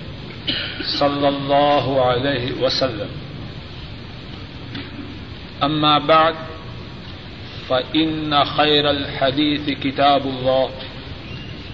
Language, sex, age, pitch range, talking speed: Urdu, male, 50-69, 140-160 Hz, 55 wpm